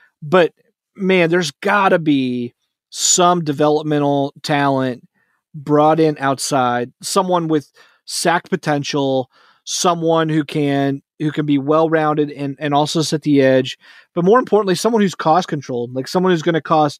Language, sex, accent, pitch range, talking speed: English, male, American, 145-175 Hz, 150 wpm